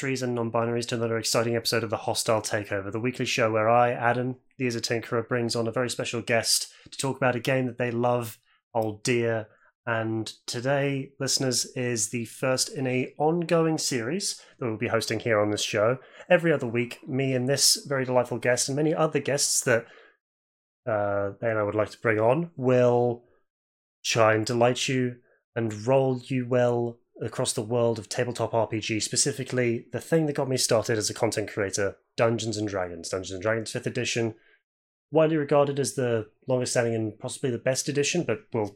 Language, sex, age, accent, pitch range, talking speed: English, male, 30-49, British, 115-130 Hz, 190 wpm